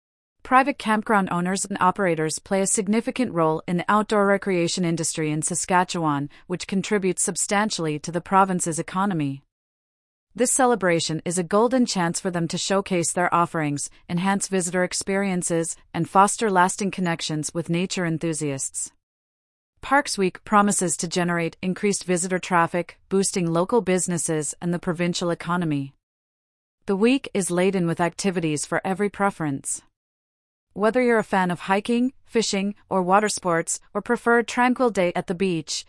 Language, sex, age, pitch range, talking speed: English, female, 40-59, 165-205 Hz, 145 wpm